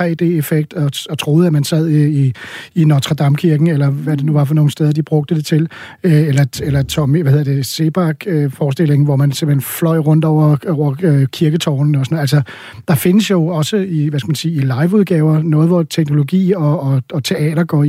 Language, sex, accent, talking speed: Danish, male, native, 205 wpm